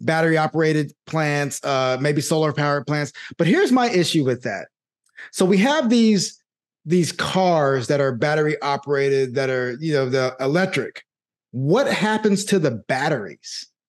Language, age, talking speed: English, 30-49, 140 wpm